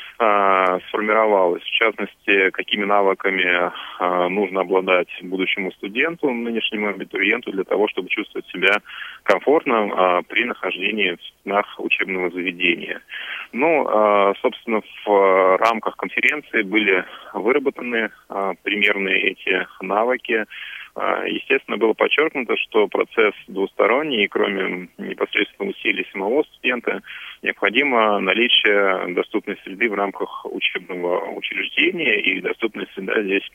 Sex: male